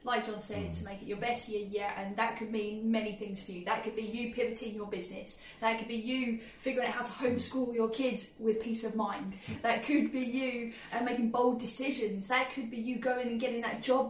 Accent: British